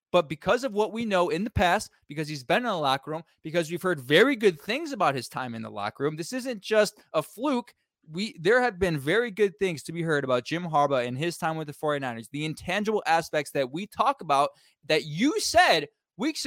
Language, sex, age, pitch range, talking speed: English, male, 20-39, 165-230 Hz, 235 wpm